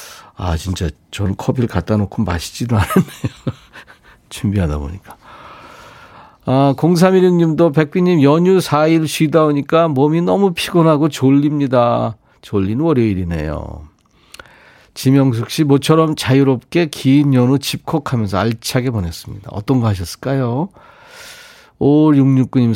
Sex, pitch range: male, 105-155 Hz